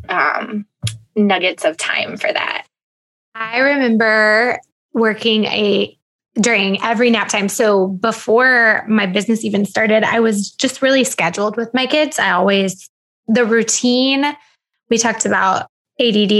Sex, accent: female, American